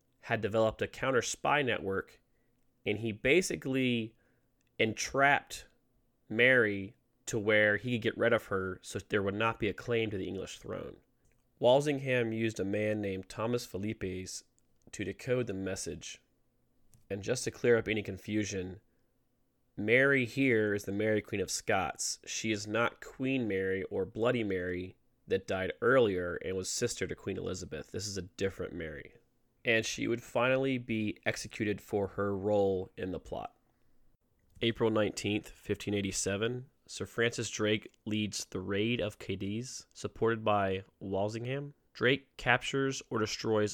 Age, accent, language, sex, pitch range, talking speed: 30-49, American, English, male, 100-125 Hz, 145 wpm